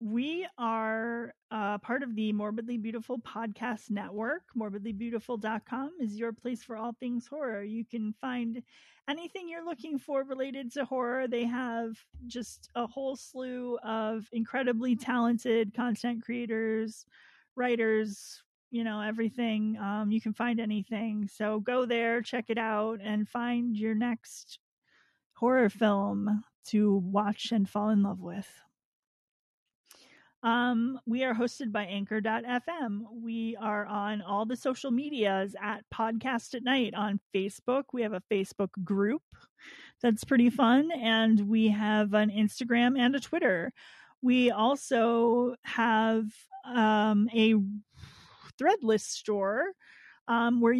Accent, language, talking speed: American, English, 130 wpm